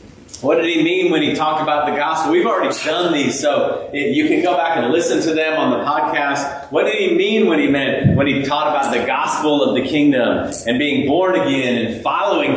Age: 30-49